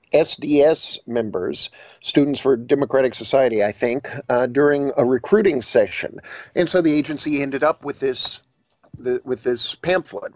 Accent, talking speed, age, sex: American, 145 wpm, 50-69, male